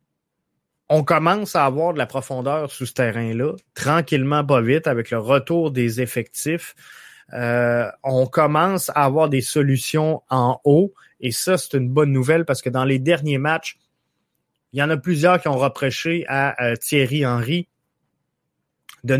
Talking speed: 165 wpm